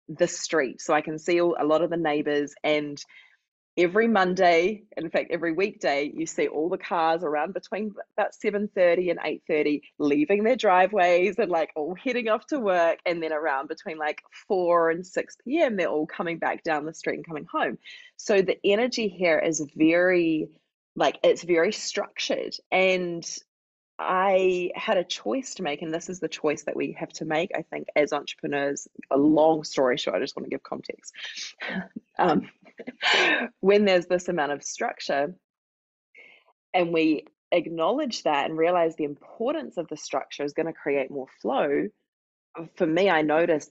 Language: English